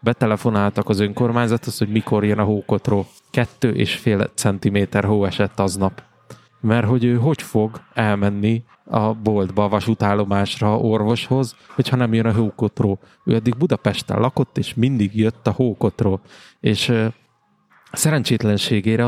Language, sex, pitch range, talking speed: Hungarian, male, 100-120 Hz, 135 wpm